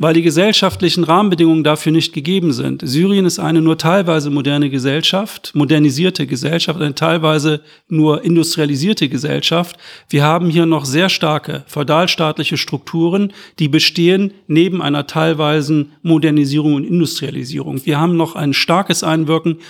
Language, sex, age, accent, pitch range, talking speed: German, male, 40-59, German, 150-175 Hz, 135 wpm